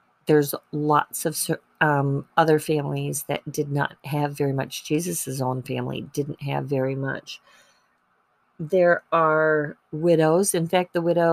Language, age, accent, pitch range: English, 40-59, American, 150-170 Hz